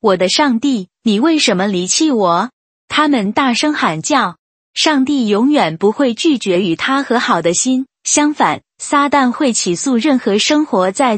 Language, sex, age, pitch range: Chinese, female, 20-39, 205-280 Hz